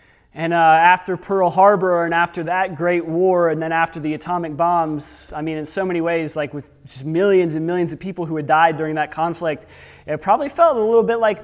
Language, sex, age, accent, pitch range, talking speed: English, male, 30-49, American, 150-195 Hz, 225 wpm